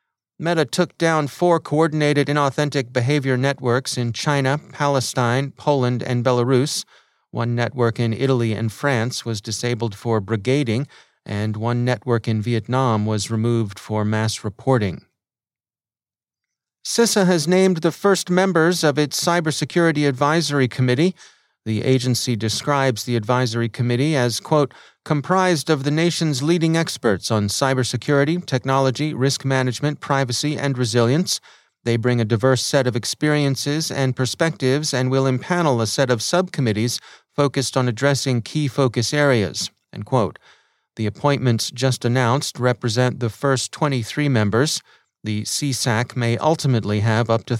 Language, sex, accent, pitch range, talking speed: English, male, American, 120-150 Hz, 135 wpm